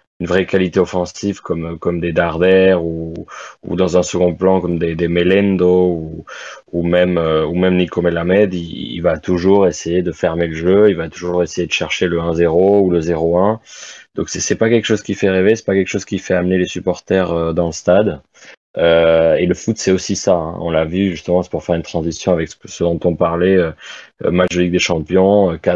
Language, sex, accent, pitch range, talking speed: French, male, French, 85-95 Hz, 220 wpm